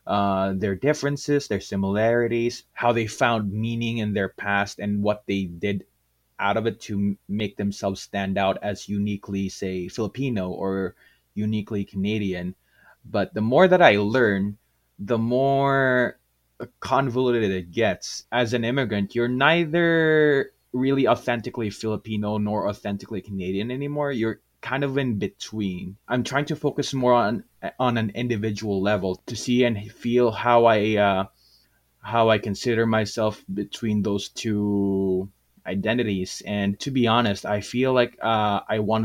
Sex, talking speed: male, 145 wpm